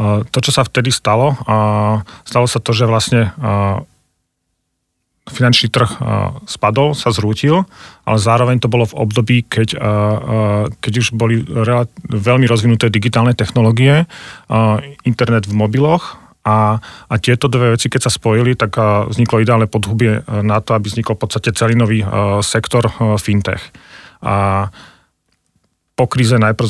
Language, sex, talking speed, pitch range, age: Slovak, male, 125 wpm, 105-120 Hz, 40-59